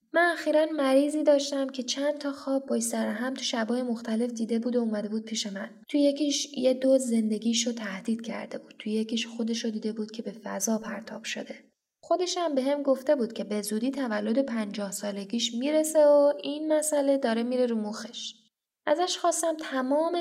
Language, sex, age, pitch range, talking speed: Persian, female, 10-29, 220-275 Hz, 185 wpm